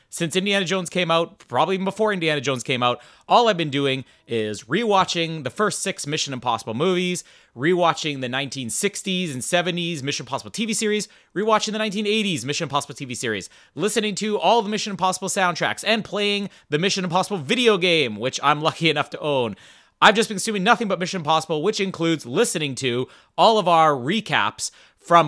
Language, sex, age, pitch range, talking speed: English, male, 30-49, 140-195 Hz, 185 wpm